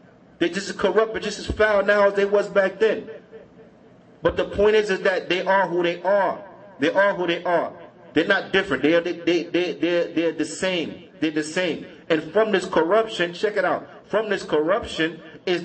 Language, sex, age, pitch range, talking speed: English, male, 40-59, 170-225 Hz, 210 wpm